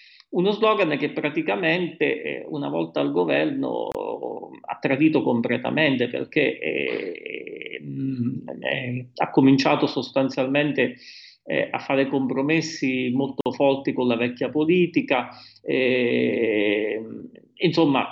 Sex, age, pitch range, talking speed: male, 40-59, 130-160 Hz, 85 wpm